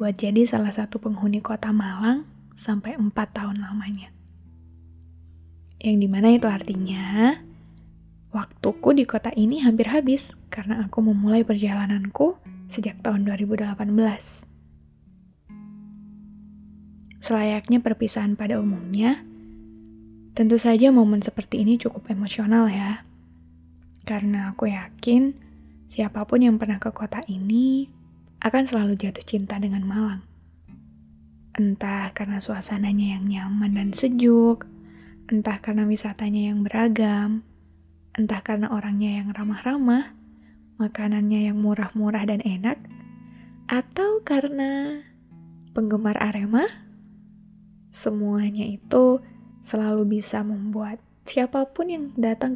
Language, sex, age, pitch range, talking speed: Indonesian, female, 10-29, 195-225 Hz, 100 wpm